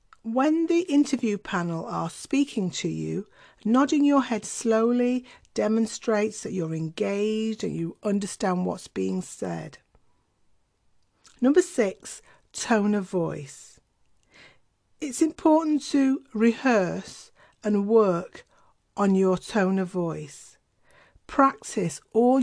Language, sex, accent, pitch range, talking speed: English, female, British, 180-240 Hz, 105 wpm